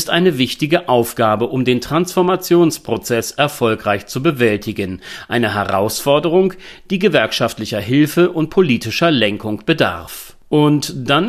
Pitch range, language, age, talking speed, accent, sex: 110-150 Hz, German, 40-59, 110 wpm, German, male